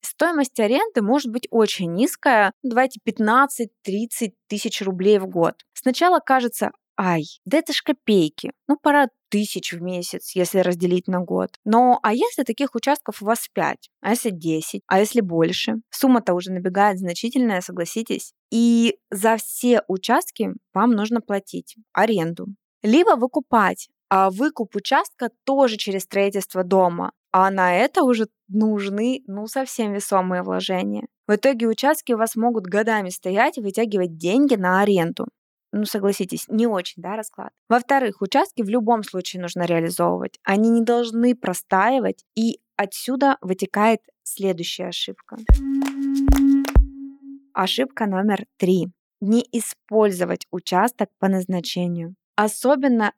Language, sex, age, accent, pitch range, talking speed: Russian, female, 20-39, native, 190-240 Hz, 130 wpm